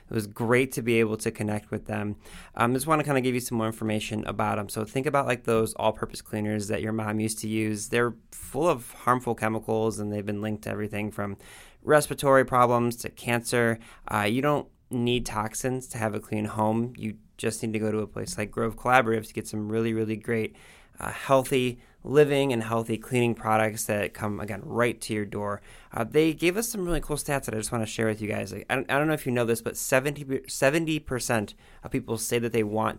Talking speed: 235 wpm